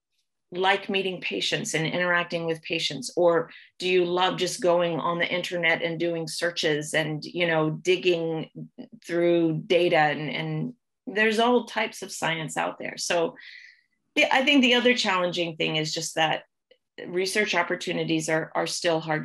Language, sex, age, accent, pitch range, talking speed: English, female, 30-49, American, 160-185 Hz, 160 wpm